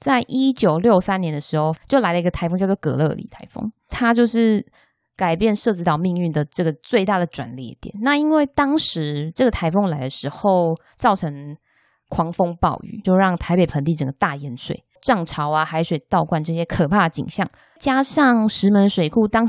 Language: Chinese